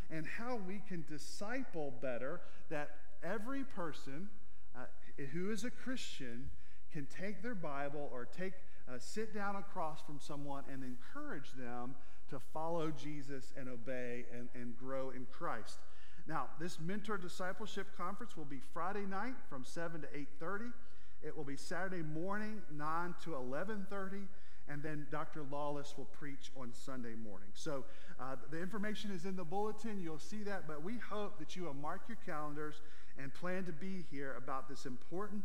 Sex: male